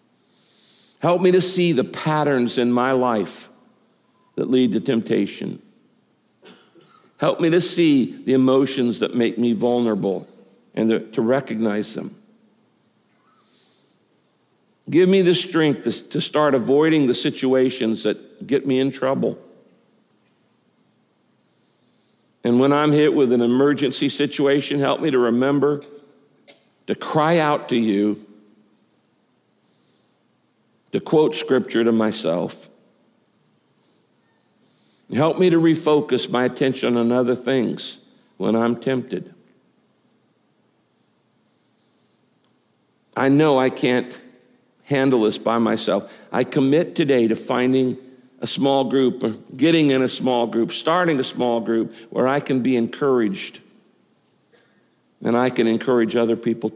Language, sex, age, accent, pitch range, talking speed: English, male, 60-79, American, 120-150 Hz, 115 wpm